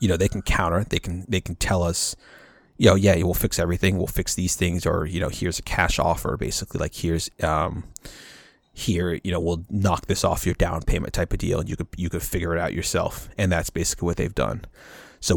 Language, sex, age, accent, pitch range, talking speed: English, male, 30-49, American, 85-100 Hz, 240 wpm